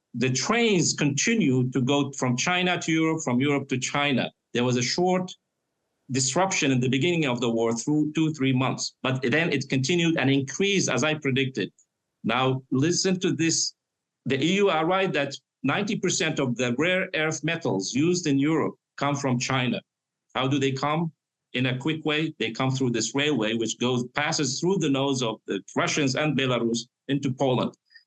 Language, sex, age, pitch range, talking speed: English, male, 50-69, 130-165 Hz, 180 wpm